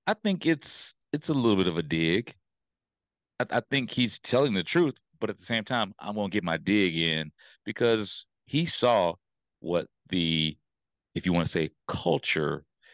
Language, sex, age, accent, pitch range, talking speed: English, male, 30-49, American, 90-120 Hz, 180 wpm